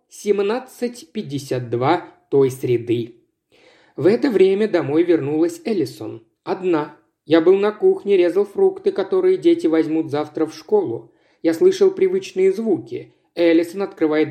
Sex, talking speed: male, 120 wpm